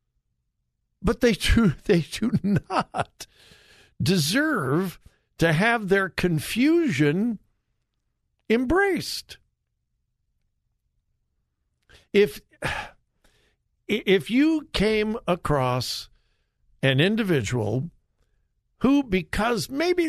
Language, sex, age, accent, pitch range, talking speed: English, male, 50-69, American, 160-240 Hz, 65 wpm